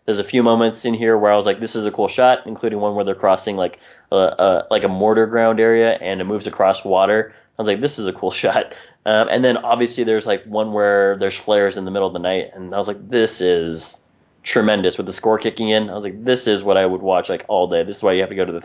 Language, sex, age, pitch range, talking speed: English, male, 20-39, 100-115 Hz, 285 wpm